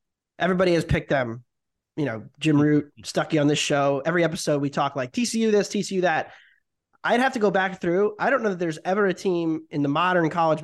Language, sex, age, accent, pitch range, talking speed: English, male, 20-39, American, 135-165 Hz, 220 wpm